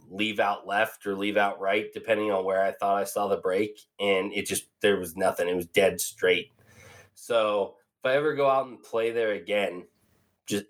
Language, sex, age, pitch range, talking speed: English, male, 20-39, 105-140 Hz, 210 wpm